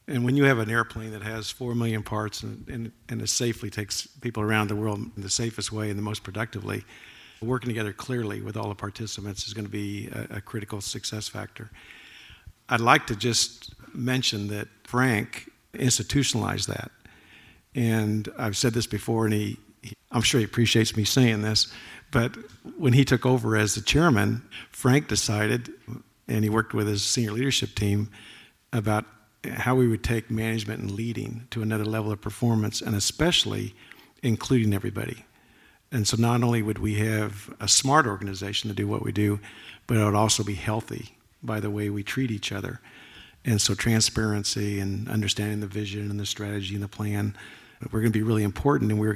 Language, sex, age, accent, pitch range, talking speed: English, male, 50-69, American, 105-115 Hz, 185 wpm